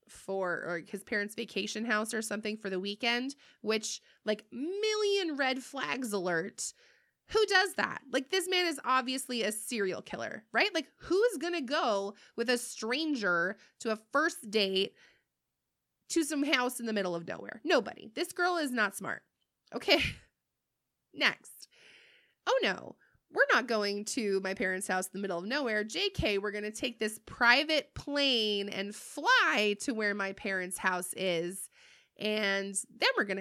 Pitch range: 200-290 Hz